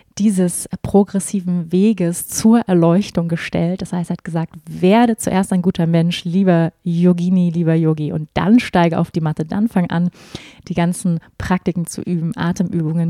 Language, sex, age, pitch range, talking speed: German, female, 20-39, 170-200 Hz, 160 wpm